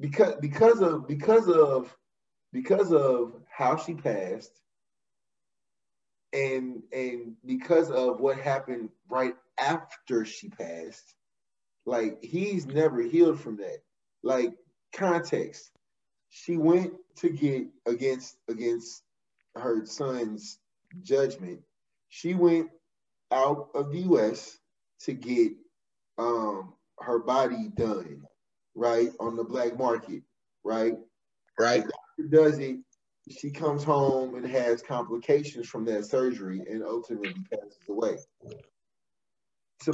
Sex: male